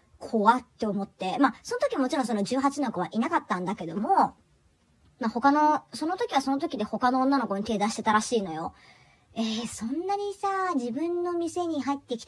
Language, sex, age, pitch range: Japanese, male, 40-59, 205-330 Hz